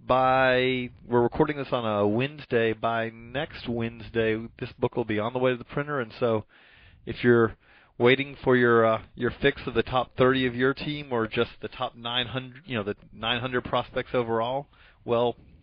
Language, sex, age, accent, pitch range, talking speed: English, male, 30-49, American, 110-130 Hz, 190 wpm